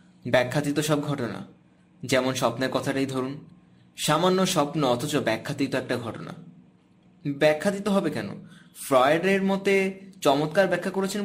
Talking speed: 110 wpm